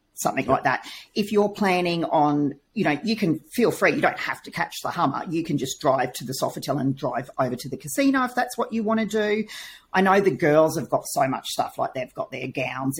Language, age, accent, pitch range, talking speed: English, 40-59, Australian, 140-185 Hz, 250 wpm